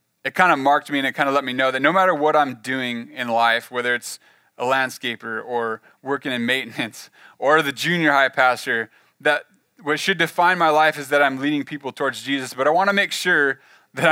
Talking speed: 220 wpm